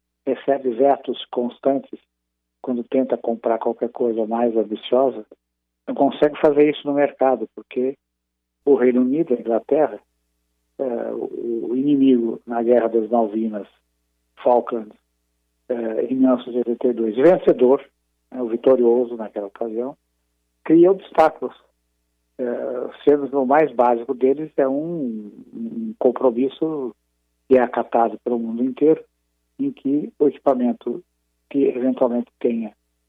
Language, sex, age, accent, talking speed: Portuguese, male, 50-69, Brazilian, 110 wpm